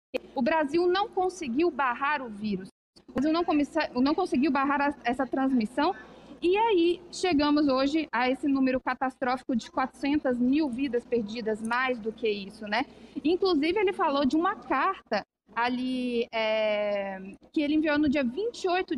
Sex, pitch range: female, 250-330 Hz